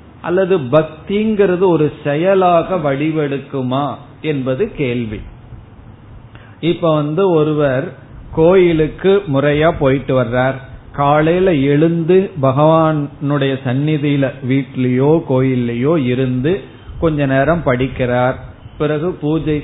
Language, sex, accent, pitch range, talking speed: Tamil, male, native, 130-165 Hz, 80 wpm